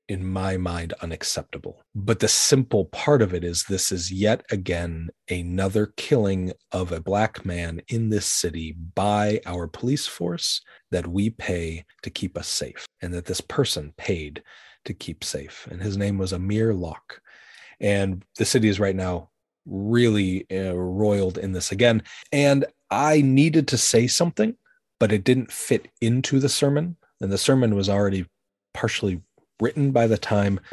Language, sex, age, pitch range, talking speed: English, male, 30-49, 90-115 Hz, 165 wpm